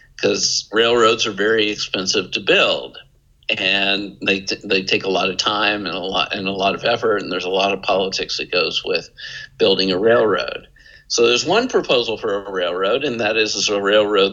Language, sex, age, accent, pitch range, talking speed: English, male, 50-69, American, 95-120 Hz, 200 wpm